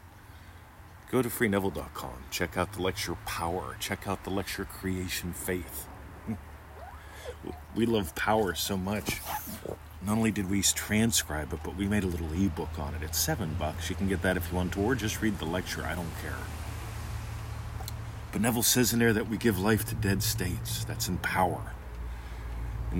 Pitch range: 85-100 Hz